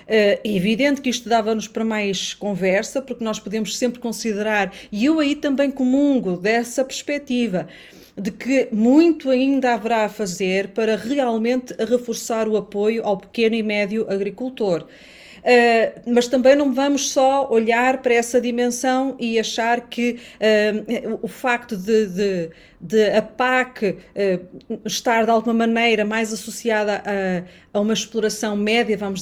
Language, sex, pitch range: Portuguese, female, 215-260 Hz